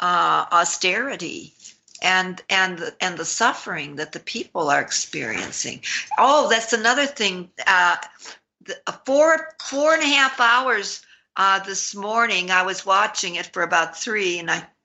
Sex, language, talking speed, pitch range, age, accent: female, English, 150 wpm, 175-220 Hz, 60-79, American